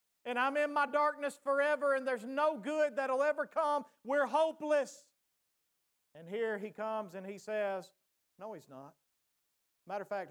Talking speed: 165 wpm